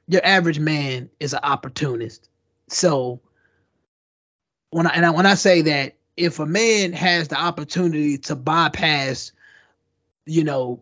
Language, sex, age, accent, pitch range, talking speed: English, male, 20-39, American, 160-225 Hz, 140 wpm